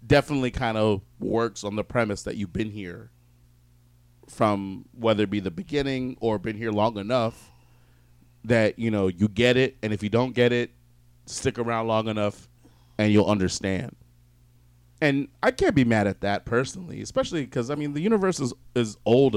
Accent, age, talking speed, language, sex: American, 30-49, 180 wpm, English, male